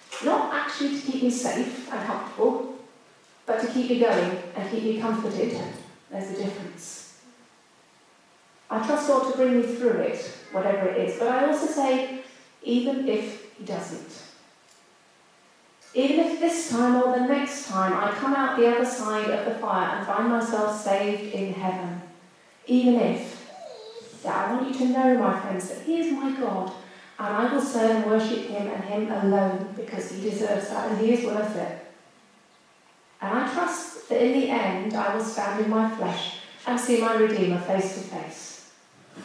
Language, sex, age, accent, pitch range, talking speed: English, female, 30-49, British, 195-250 Hz, 175 wpm